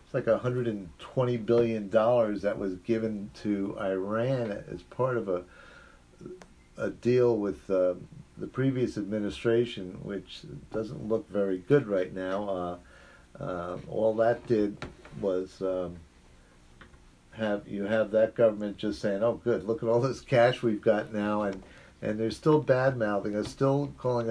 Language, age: English, 50-69